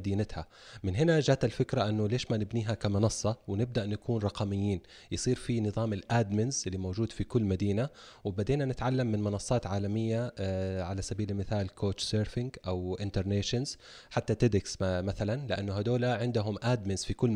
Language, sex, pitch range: Arabic, male, 100-120 Hz